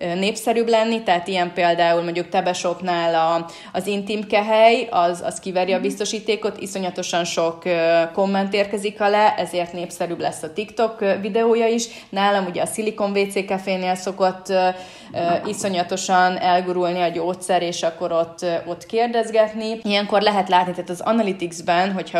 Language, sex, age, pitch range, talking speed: Hungarian, female, 30-49, 175-205 Hz, 140 wpm